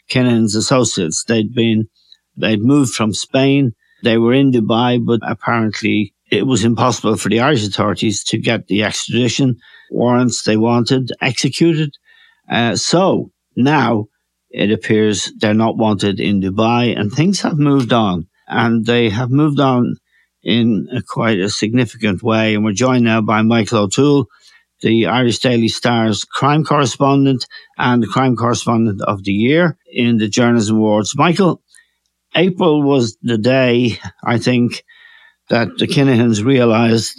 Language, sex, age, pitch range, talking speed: English, male, 60-79, 110-135 Hz, 145 wpm